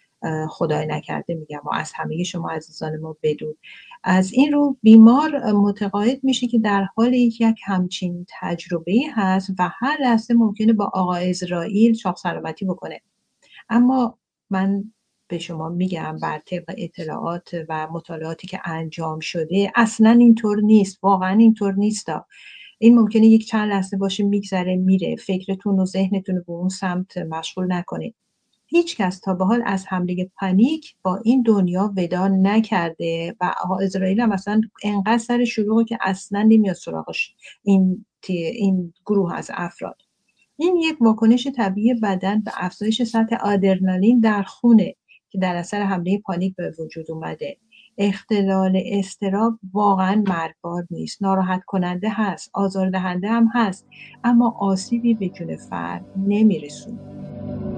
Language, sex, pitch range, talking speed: English, female, 180-225 Hz, 140 wpm